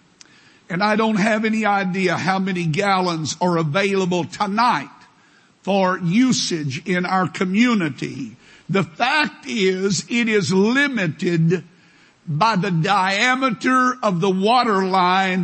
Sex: male